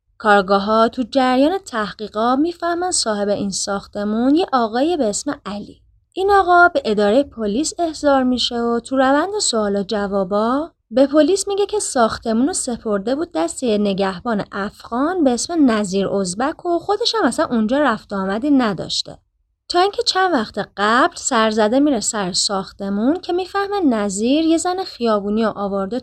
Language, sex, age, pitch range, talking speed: Persian, female, 20-39, 205-320 Hz, 155 wpm